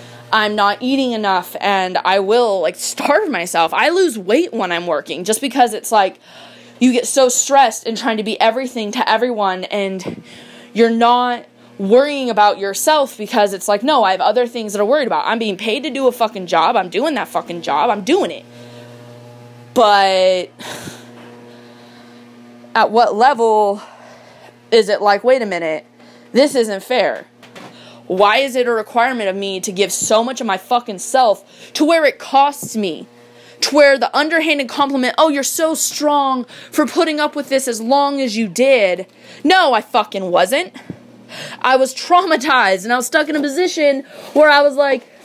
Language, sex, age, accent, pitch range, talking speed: English, female, 20-39, American, 195-265 Hz, 180 wpm